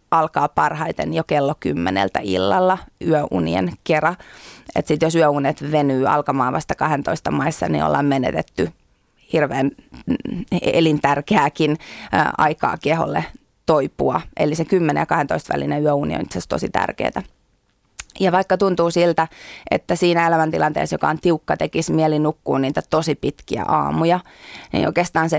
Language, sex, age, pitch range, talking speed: Finnish, female, 30-49, 145-170 Hz, 125 wpm